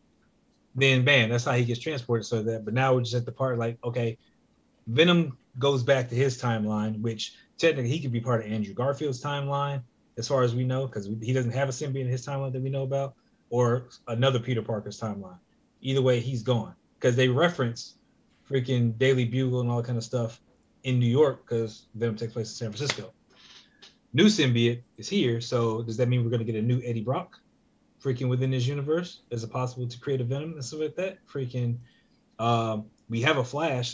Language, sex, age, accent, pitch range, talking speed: English, male, 30-49, American, 120-135 Hz, 210 wpm